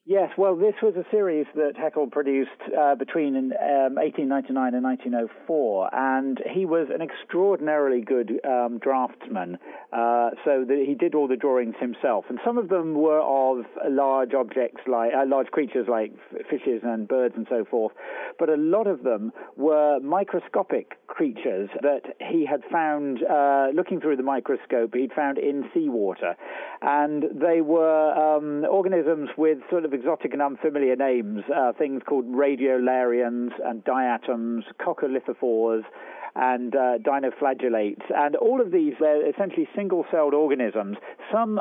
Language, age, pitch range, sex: English, 40-59, 130-170 Hz, male